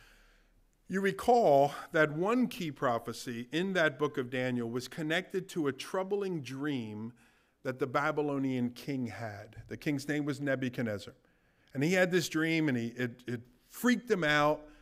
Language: English